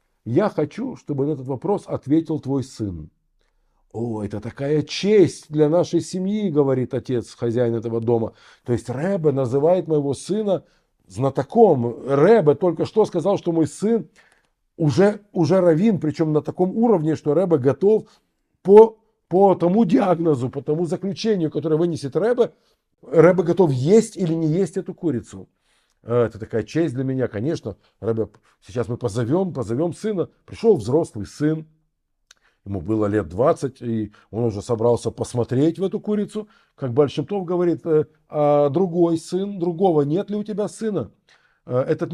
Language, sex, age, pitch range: Russian, male, 50-69, 125-180 Hz